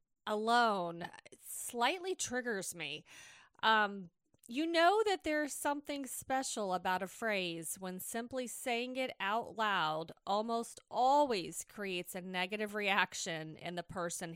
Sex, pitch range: female, 175-235 Hz